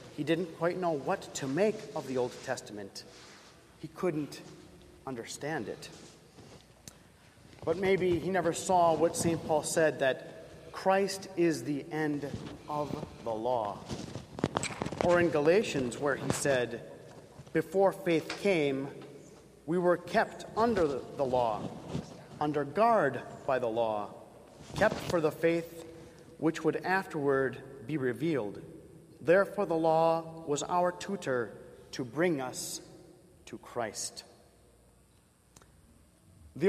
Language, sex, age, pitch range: English, male, 40-59, 140-175 Hz